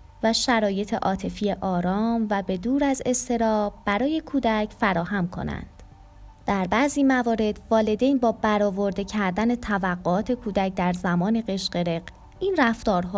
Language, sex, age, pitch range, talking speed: Persian, female, 20-39, 180-230 Hz, 125 wpm